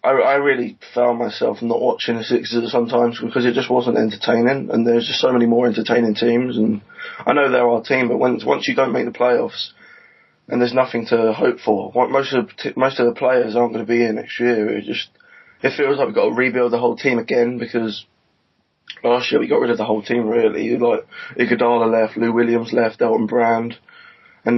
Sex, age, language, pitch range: male, 20-39, English, 115-135 Hz